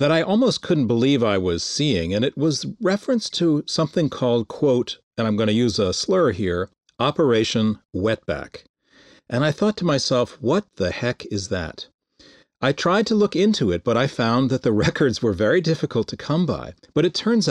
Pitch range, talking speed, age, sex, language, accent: 115-155 Hz, 195 wpm, 40-59, male, English, American